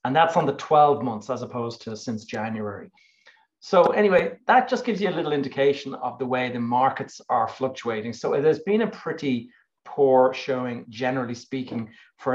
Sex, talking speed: male, 180 wpm